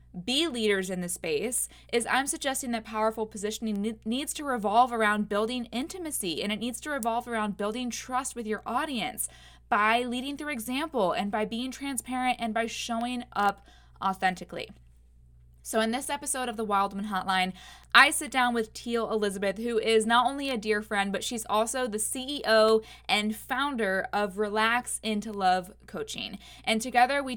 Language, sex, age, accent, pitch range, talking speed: English, female, 20-39, American, 205-250 Hz, 170 wpm